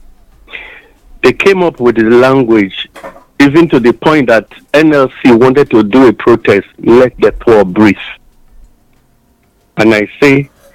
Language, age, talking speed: English, 50-69, 135 wpm